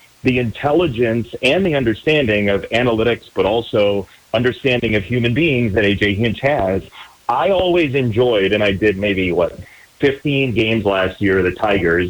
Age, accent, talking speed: 30-49, American, 160 wpm